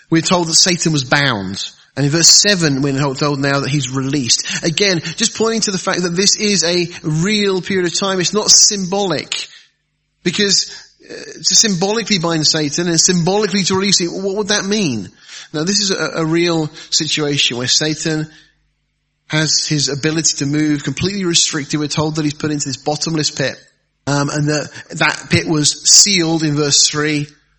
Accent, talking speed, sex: British, 180 wpm, male